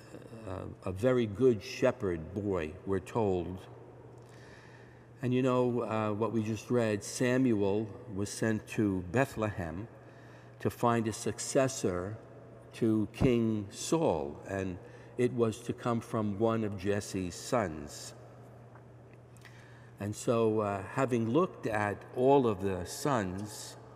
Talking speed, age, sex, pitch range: 120 wpm, 60-79, male, 100-120 Hz